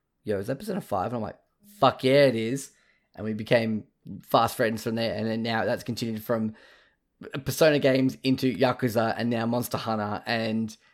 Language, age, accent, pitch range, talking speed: English, 10-29, Australian, 110-130 Hz, 185 wpm